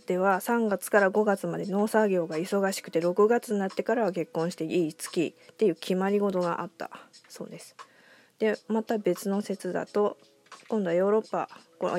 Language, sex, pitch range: Japanese, female, 175-220 Hz